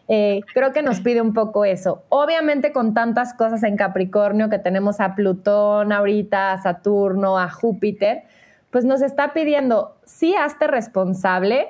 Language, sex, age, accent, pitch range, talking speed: Spanish, female, 20-39, Mexican, 190-235 Hz, 155 wpm